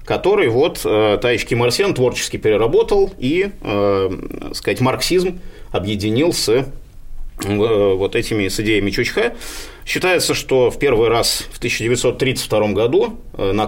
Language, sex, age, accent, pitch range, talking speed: Russian, male, 30-49, native, 100-160 Hz, 120 wpm